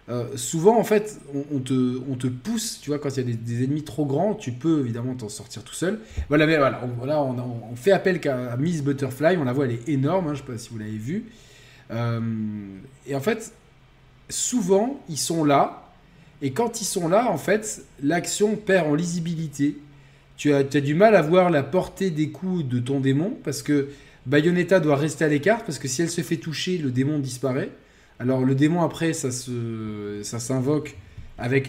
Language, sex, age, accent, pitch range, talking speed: French, male, 20-39, French, 125-165 Hz, 215 wpm